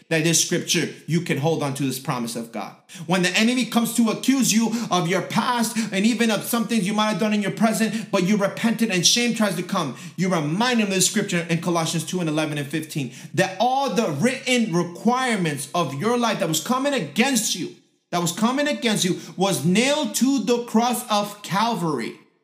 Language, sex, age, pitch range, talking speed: English, male, 30-49, 170-240 Hz, 215 wpm